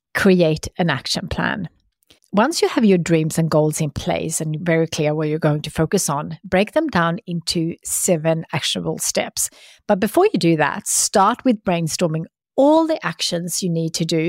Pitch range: 160-190 Hz